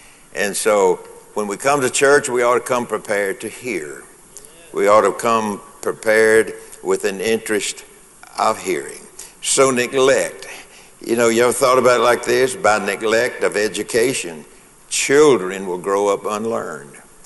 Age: 60-79